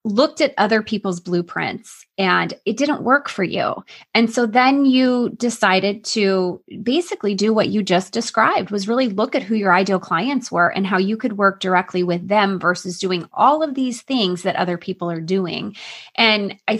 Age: 20-39